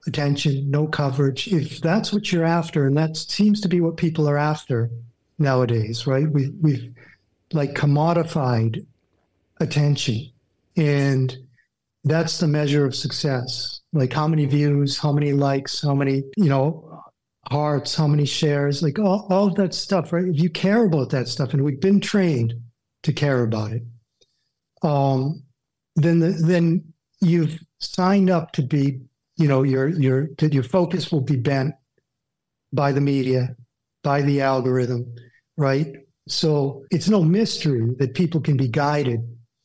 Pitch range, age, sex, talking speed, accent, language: 130-160 Hz, 50-69, male, 150 wpm, American, English